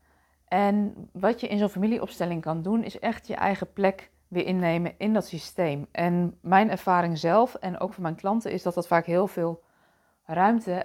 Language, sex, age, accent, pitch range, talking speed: Dutch, female, 20-39, Dutch, 165-195 Hz, 190 wpm